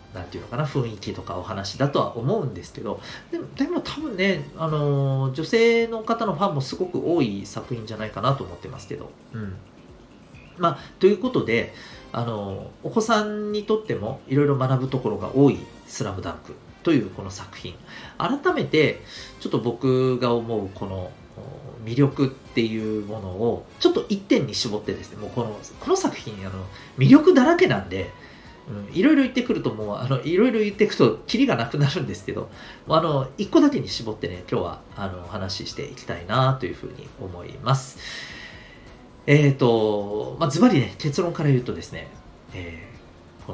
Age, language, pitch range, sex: 40-59, Japanese, 105-155 Hz, male